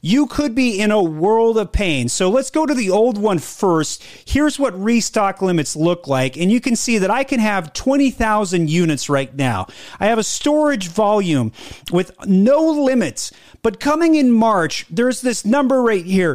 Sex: male